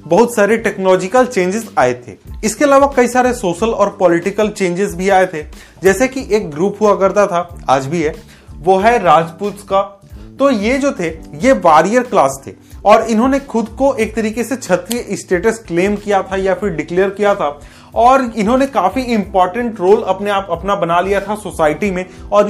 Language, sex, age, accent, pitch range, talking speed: Hindi, male, 30-49, native, 180-230 Hz, 145 wpm